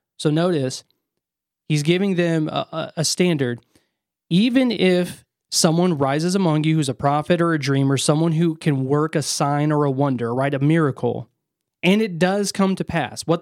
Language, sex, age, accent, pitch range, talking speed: English, male, 20-39, American, 135-165 Hz, 180 wpm